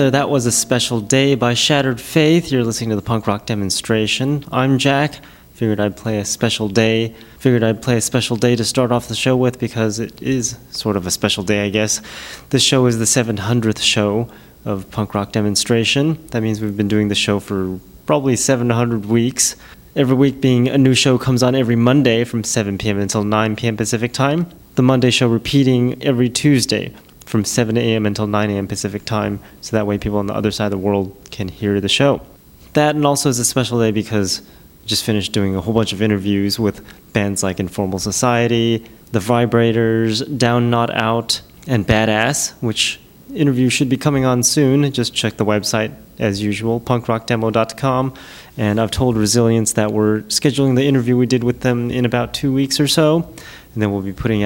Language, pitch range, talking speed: English, 105-130 Hz, 195 wpm